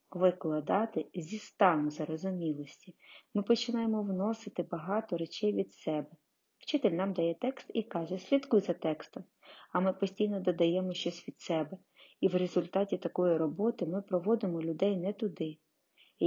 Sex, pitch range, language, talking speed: female, 170-205 Hz, Ukrainian, 140 wpm